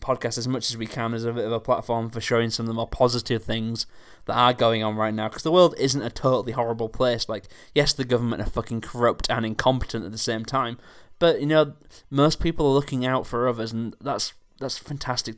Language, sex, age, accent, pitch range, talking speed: English, male, 20-39, British, 110-125 Hz, 240 wpm